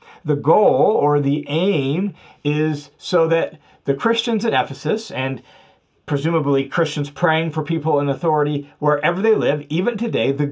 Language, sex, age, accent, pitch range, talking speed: English, male, 40-59, American, 140-180 Hz, 150 wpm